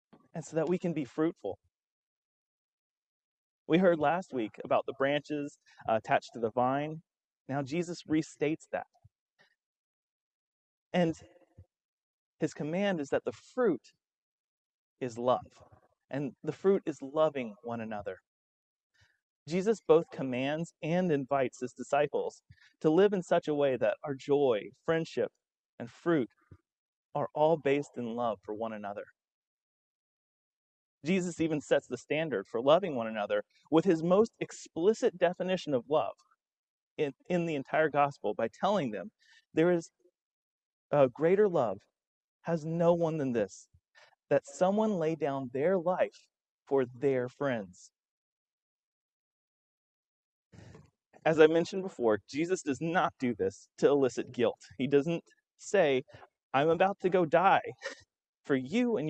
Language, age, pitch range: English, 30-49, 130-175 Hz